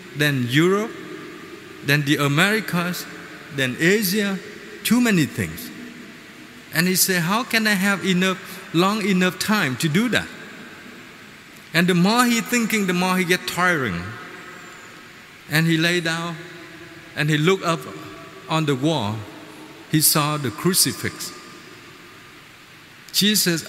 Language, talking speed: Vietnamese, 125 wpm